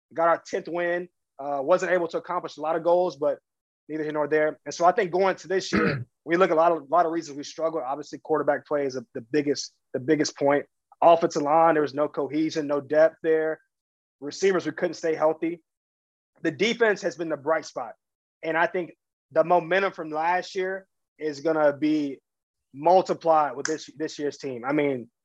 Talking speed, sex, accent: 210 wpm, male, American